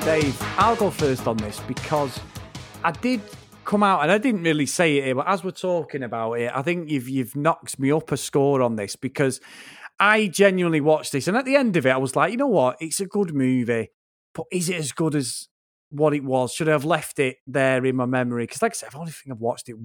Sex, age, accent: male, 30-49, British